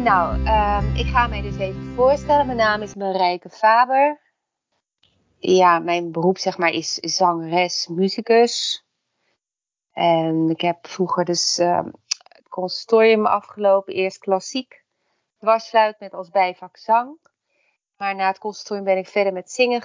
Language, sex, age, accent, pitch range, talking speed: Dutch, female, 30-49, Dutch, 185-220 Hz, 140 wpm